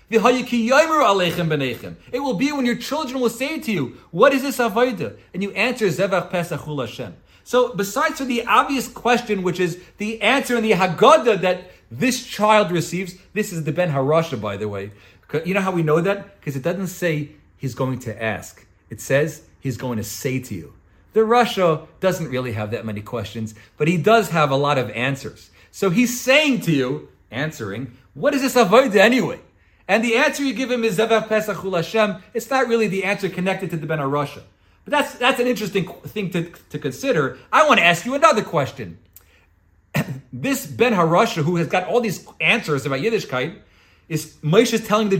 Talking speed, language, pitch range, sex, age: 185 wpm, English, 145-230 Hz, male, 40-59